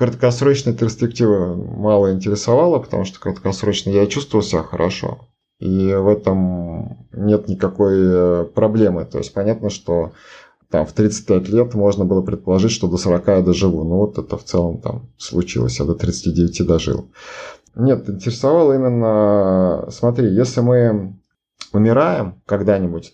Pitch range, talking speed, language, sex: 90-105 Hz, 135 wpm, Russian, male